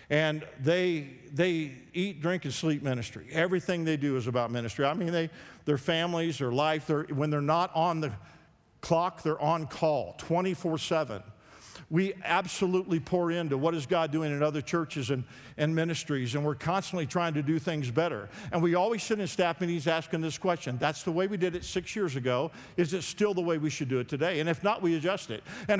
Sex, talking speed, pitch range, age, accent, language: male, 210 wpm, 150-205 Hz, 50-69, American, English